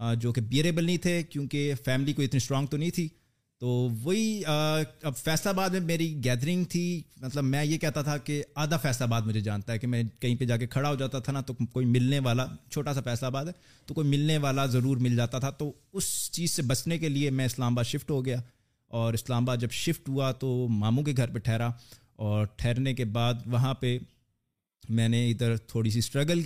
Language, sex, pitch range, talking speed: Urdu, male, 120-155 Hz, 225 wpm